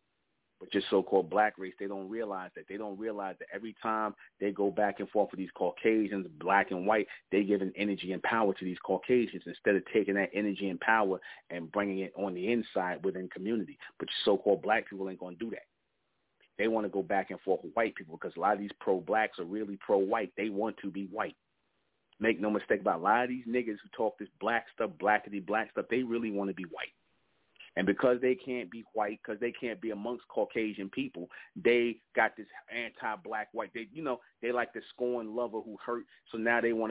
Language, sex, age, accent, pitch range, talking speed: English, male, 30-49, American, 100-120 Hz, 225 wpm